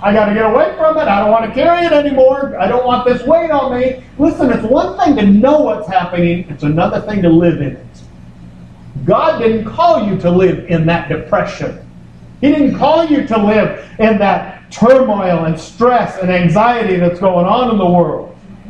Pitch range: 170-255 Hz